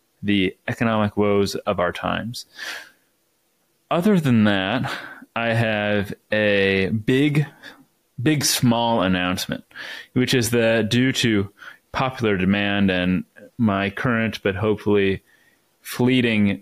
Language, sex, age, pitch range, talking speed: English, male, 30-49, 100-120 Hz, 105 wpm